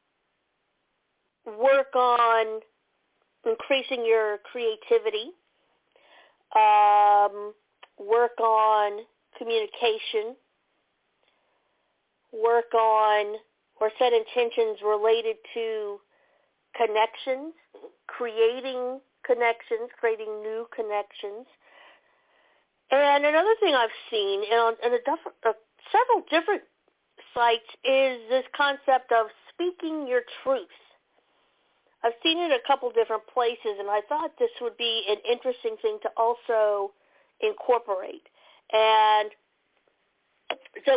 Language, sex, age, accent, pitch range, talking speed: English, female, 50-69, American, 220-295 Hz, 90 wpm